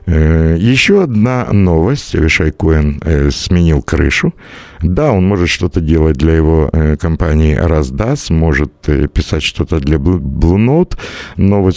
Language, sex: Russian, male